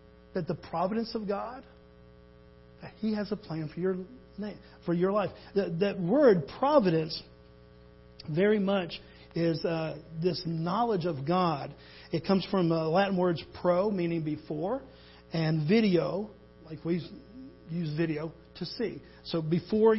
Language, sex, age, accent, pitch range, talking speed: English, male, 50-69, American, 150-215 Hz, 145 wpm